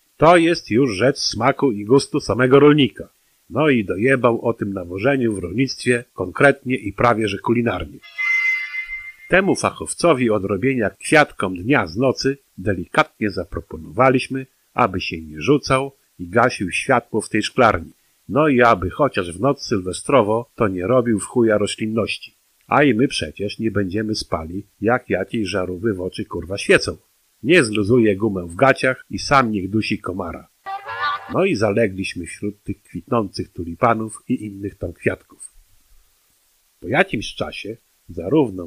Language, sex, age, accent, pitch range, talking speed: Polish, male, 50-69, native, 100-130 Hz, 145 wpm